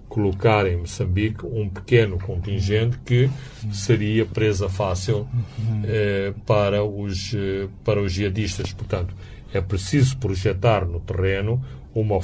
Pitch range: 100-120 Hz